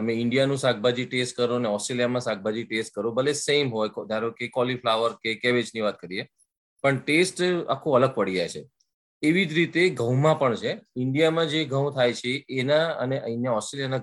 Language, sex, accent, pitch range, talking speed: Gujarati, male, native, 115-140 Hz, 175 wpm